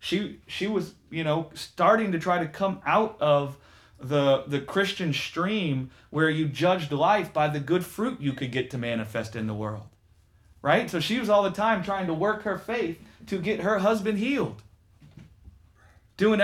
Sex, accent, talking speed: male, American, 185 wpm